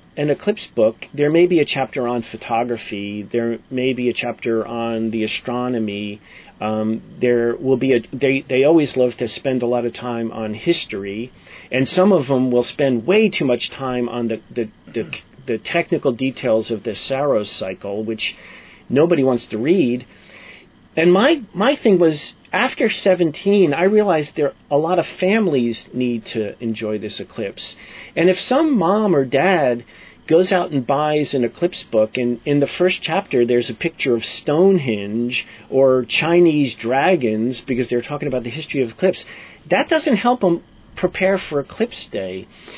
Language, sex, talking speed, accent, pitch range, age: English, male, 170 wpm, American, 120-180 Hz, 40-59